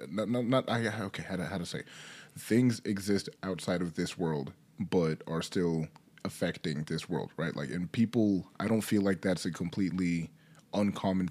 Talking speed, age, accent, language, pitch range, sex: 175 wpm, 30-49, American, English, 85-105 Hz, male